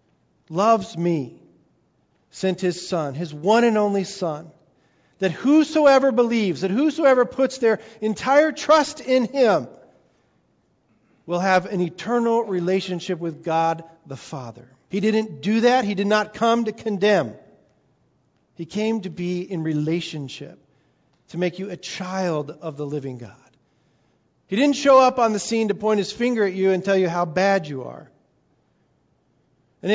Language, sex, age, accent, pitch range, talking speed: English, male, 40-59, American, 165-225 Hz, 150 wpm